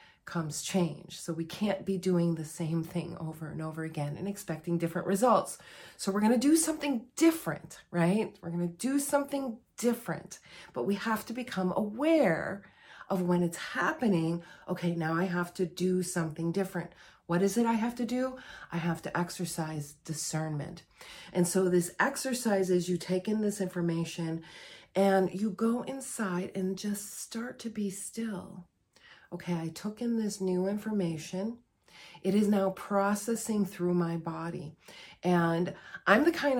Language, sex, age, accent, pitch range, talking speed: English, female, 40-59, American, 170-205 Hz, 165 wpm